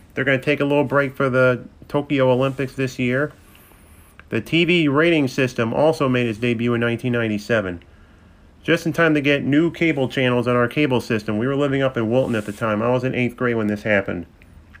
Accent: American